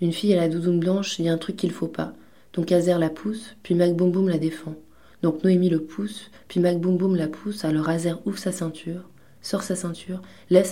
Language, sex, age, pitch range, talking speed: French, female, 20-39, 155-175 Hz, 240 wpm